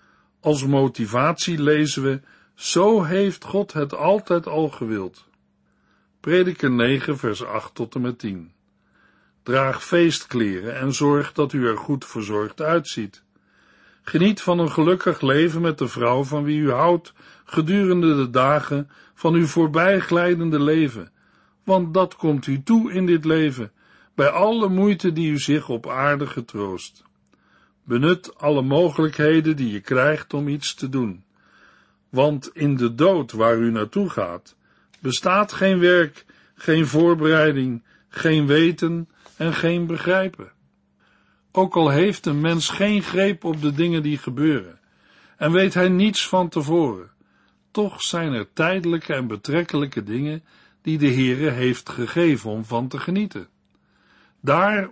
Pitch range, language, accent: 130-170 Hz, Dutch, Dutch